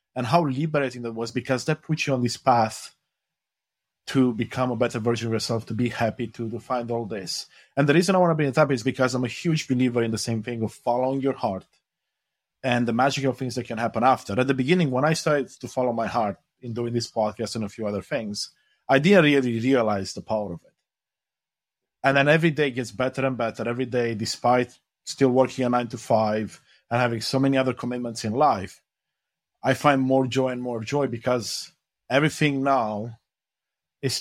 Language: English